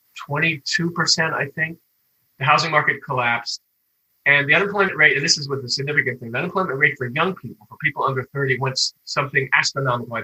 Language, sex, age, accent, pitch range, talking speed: English, male, 30-49, American, 125-160 Hz, 195 wpm